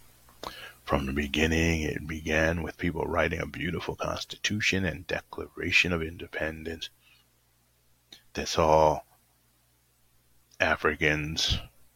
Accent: American